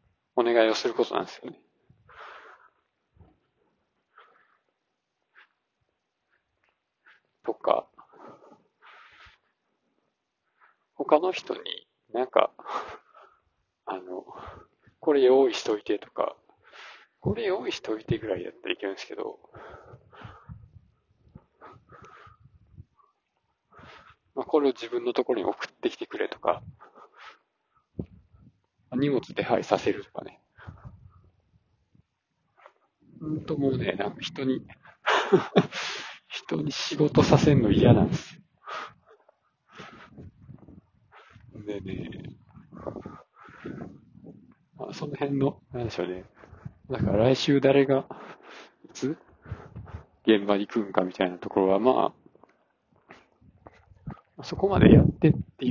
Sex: male